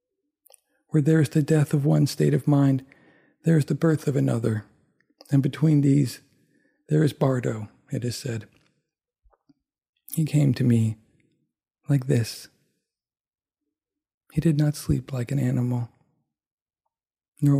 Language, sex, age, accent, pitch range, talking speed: English, male, 40-59, American, 125-150 Hz, 135 wpm